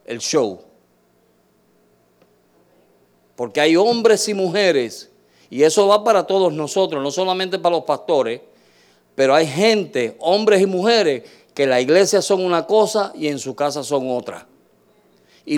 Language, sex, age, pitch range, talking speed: Spanish, male, 50-69, 120-200 Hz, 145 wpm